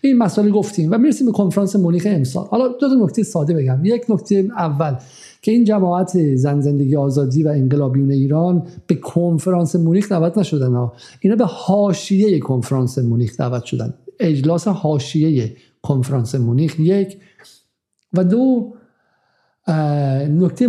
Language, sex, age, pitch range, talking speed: Persian, male, 50-69, 145-195 Hz, 135 wpm